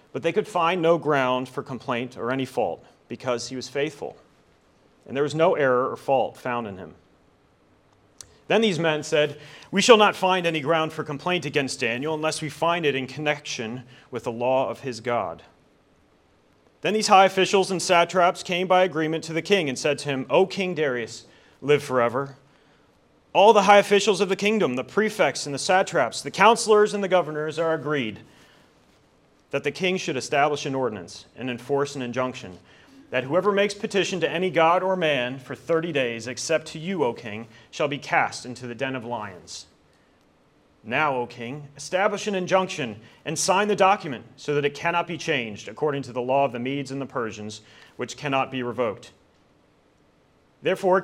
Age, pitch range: 30-49, 130-175 Hz